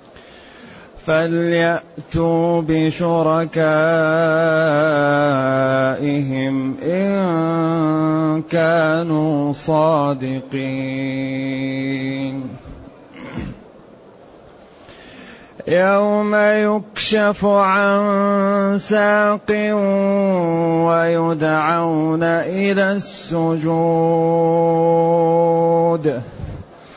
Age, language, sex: 30-49, Arabic, male